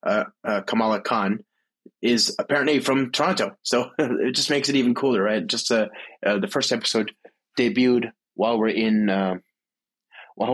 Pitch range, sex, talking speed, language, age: 110-145 Hz, male, 160 wpm, English, 20-39